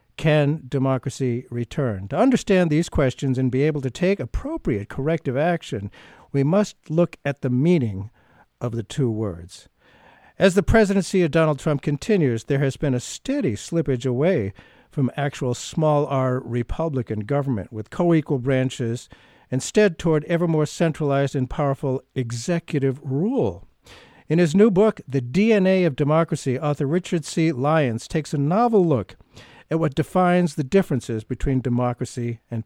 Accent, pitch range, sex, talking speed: American, 125-165 Hz, male, 150 wpm